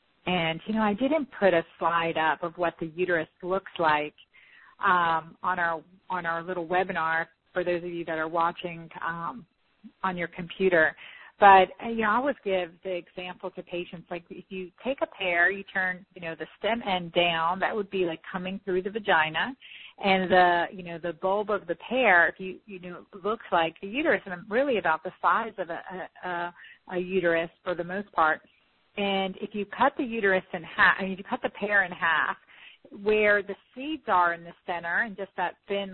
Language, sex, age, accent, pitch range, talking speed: English, female, 40-59, American, 170-195 Hz, 215 wpm